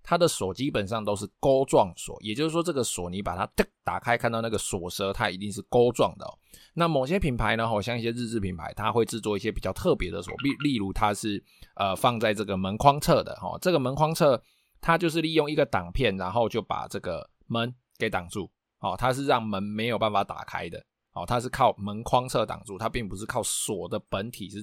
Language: Chinese